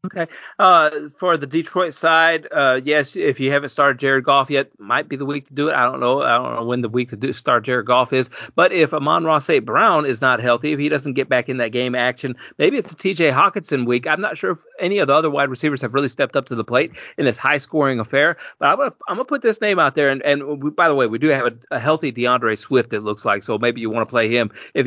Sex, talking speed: male, 280 wpm